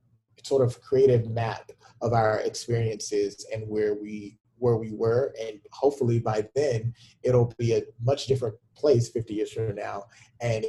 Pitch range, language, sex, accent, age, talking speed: 110-135 Hz, English, male, American, 30-49, 155 wpm